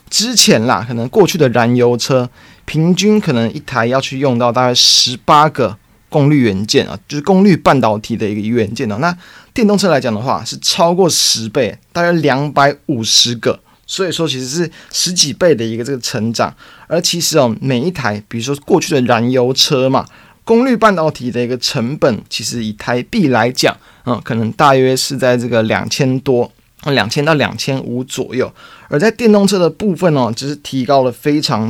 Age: 30-49